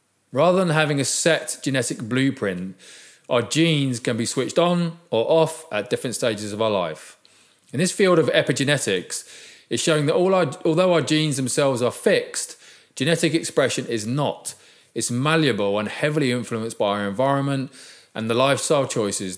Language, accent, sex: English, British, male